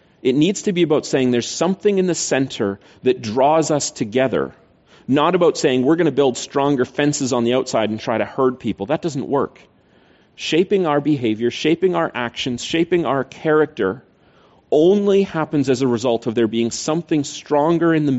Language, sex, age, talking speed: English, male, 30-49, 185 wpm